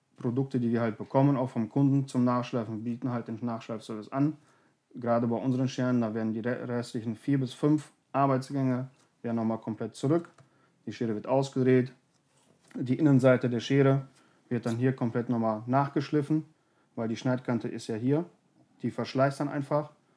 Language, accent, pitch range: German, German, 120-140 Hz